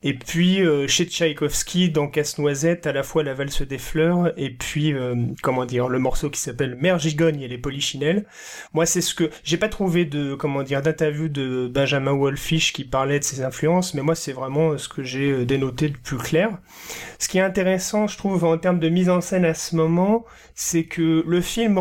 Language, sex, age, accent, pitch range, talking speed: French, male, 30-49, French, 145-175 Hz, 210 wpm